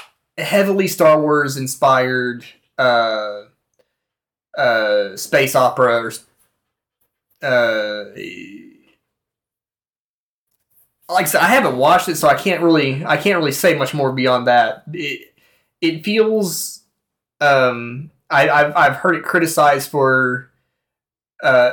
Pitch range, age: 120-155 Hz, 20-39